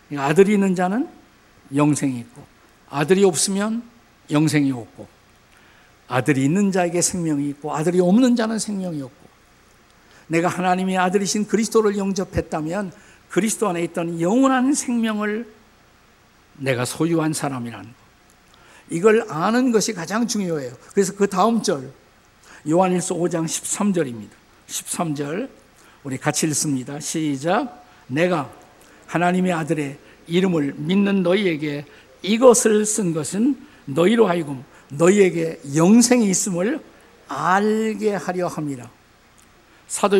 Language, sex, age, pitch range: Korean, male, 50-69, 150-210 Hz